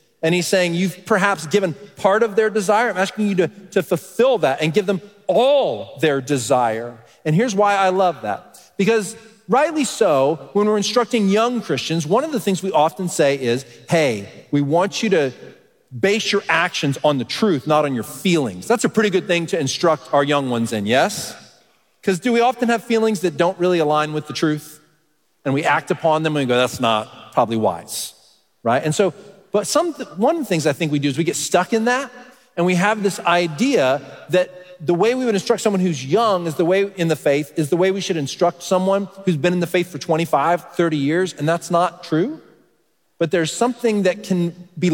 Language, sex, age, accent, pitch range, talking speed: English, male, 40-59, American, 145-200 Hz, 215 wpm